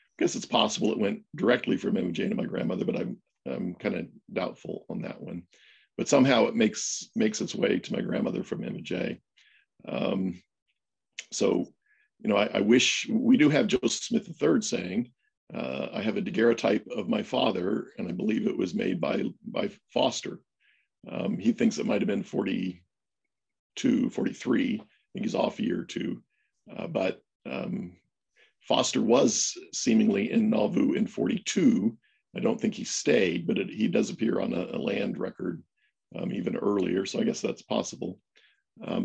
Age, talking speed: 50-69, 180 wpm